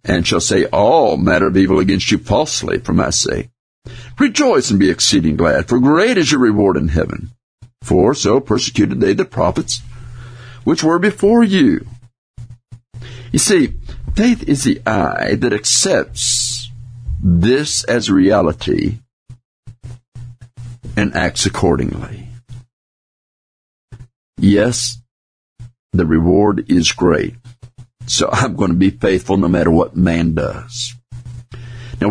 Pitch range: 115-125 Hz